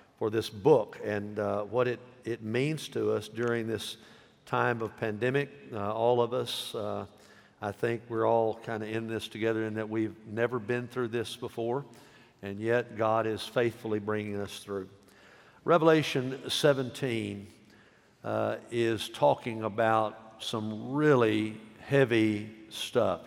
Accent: American